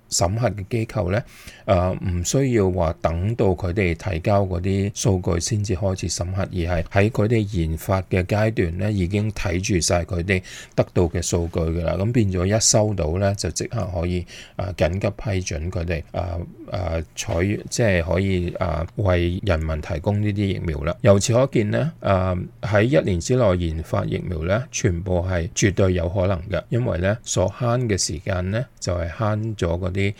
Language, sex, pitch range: English, male, 90-110 Hz